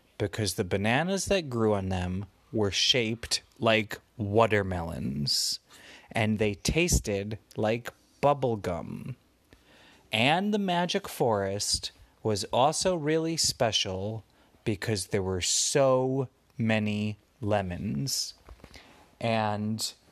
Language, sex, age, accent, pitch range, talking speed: English, male, 30-49, American, 105-165 Hz, 90 wpm